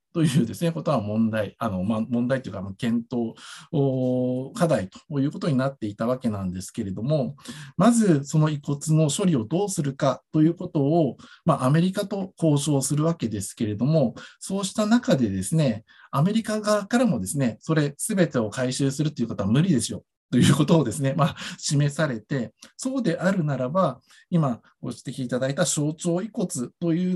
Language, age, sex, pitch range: Japanese, 50-69, male, 125-180 Hz